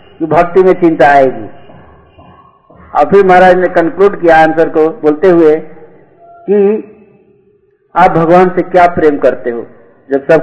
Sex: male